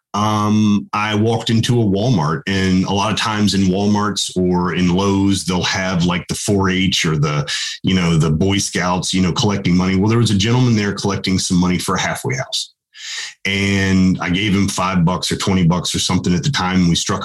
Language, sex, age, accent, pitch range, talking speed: English, male, 30-49, American, 95-125 Hz, 220 wpm